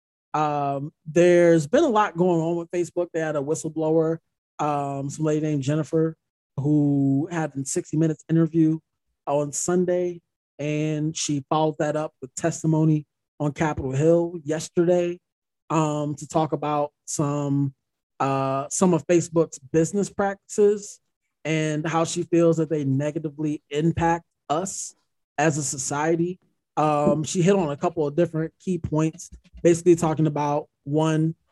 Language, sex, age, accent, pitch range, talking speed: English, male, 20-39, American, 140-165 Hz, 140 wpm